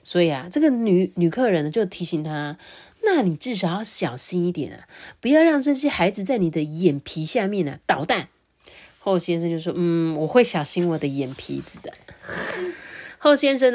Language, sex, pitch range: Chinese, female, 165-225 Hz